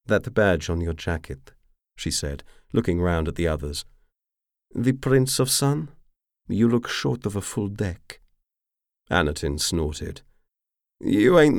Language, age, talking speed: English, 40-59, 145 wpm